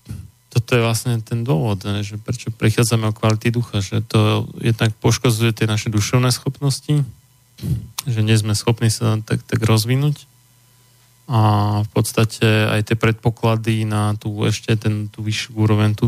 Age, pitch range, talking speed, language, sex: 20-39, 110-125 Hz, 155 wpm, Slovak, male